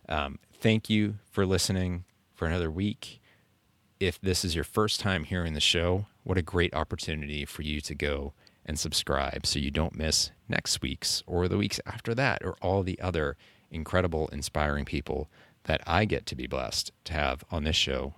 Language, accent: English, American